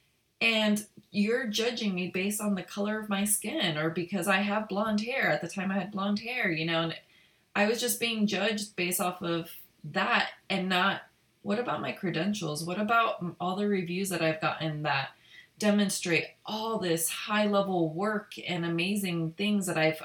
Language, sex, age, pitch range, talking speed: English, female, 30-49, 160-205 Hz, 185 wpm